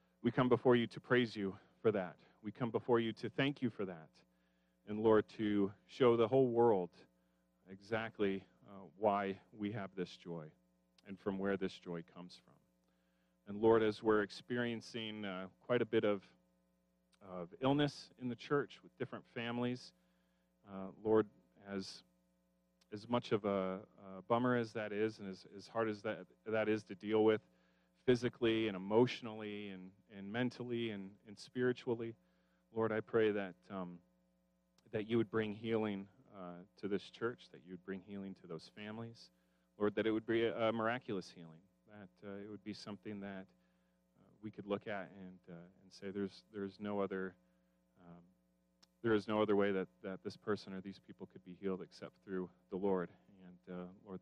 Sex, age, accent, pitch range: male, 40-59, American, 85-110 Hz